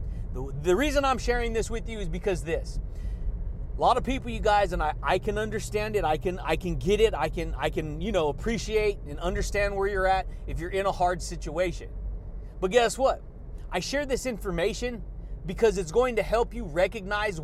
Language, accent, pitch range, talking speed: English, American, 180-240 Hz, 205 wpm